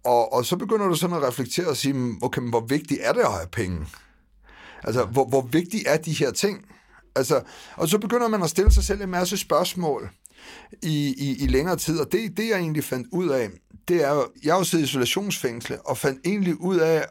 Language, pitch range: Danish, 130-175 Hz